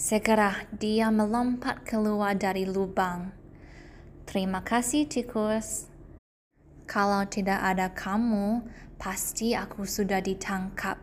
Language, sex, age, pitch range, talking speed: Indonesian, female, 10-29, 185-230 Hz, 90 wpm